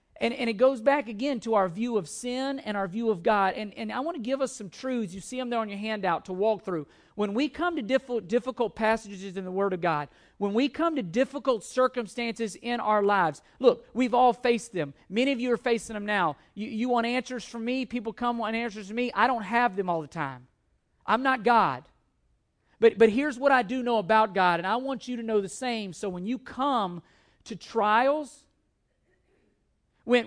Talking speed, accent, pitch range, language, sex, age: 225 wpm, American, 210-255 Hz, English, male, 40-59